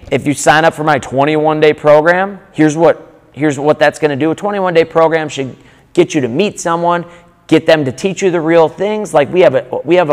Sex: male